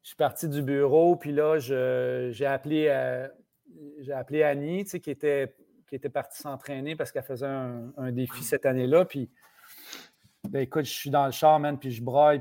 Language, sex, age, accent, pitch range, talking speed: French, male, 40-59, Canadian, 130-150 Hz, 195 wpm